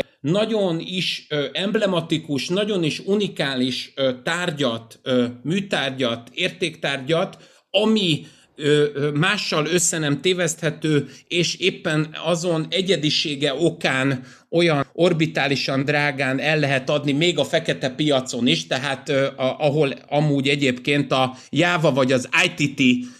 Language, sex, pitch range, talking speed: Hungarian, male, 140-185 Hz, 100 wpm